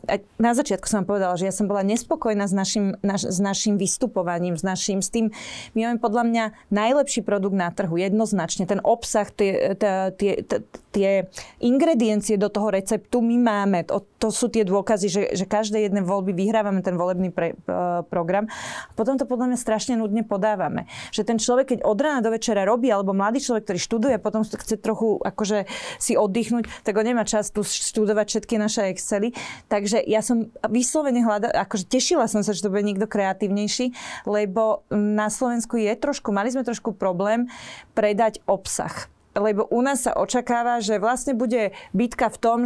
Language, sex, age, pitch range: Slovak, female, 30-49, 205-235 Hz